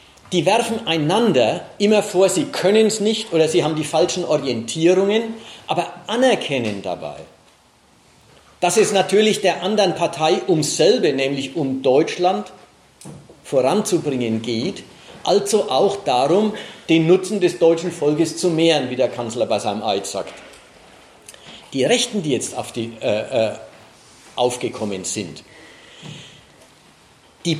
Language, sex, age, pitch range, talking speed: German, male, 50-69, 135-190 Hz, 130 wpm